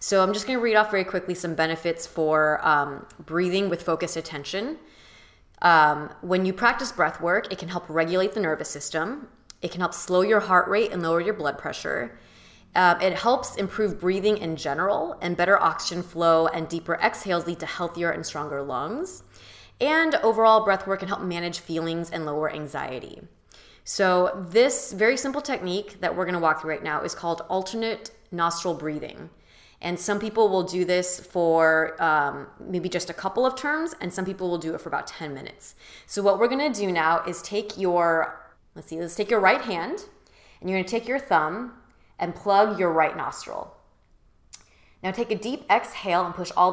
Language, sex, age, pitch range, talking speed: English, female, 20-39, 165-205 Hz, 190 wpm